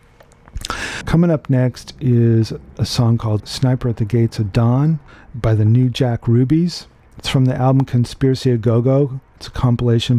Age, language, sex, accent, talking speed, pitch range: 40-59, English, male, American, 165 wpm, 110-130 Hz